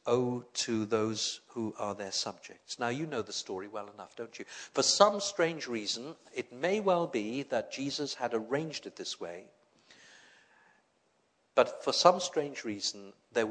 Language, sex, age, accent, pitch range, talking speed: English, male, 50-69, British, 115-170 Hz, 165 wpm